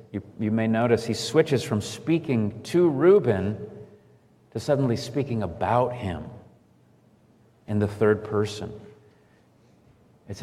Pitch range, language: 105-130 Hz, English